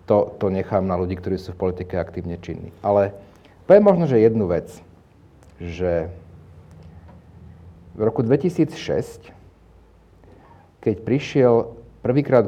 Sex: male